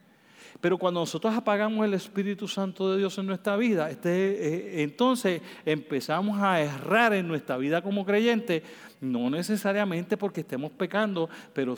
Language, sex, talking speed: Spanish, male, 150 wpm